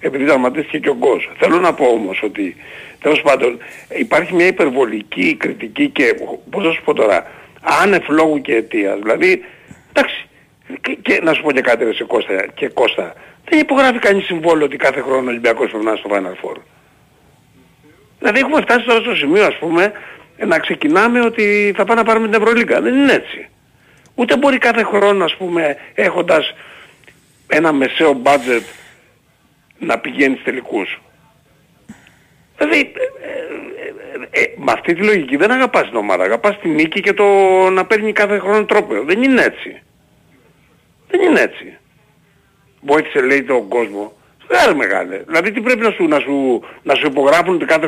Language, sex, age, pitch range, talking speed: Greek, male, 60-79, 160-265 Hz, 170 wpm